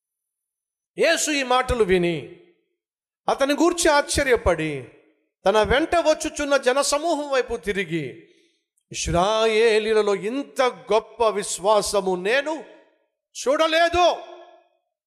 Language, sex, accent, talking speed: Telugu, male, native, 75 wpm